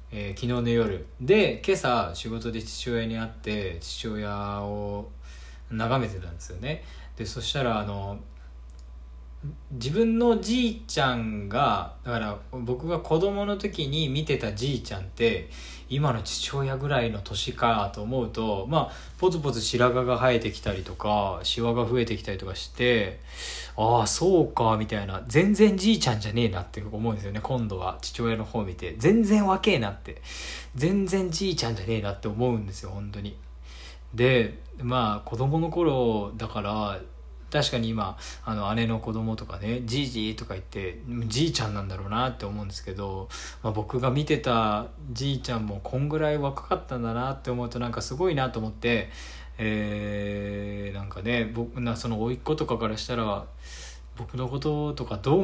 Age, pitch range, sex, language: 20-39, 100-130 Hz, male, Japanese